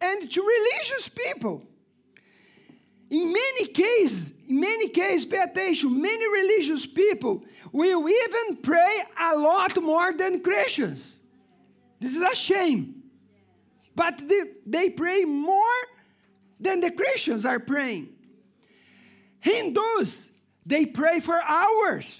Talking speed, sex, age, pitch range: 115 wpm, male, 50-69, 270-380 Hz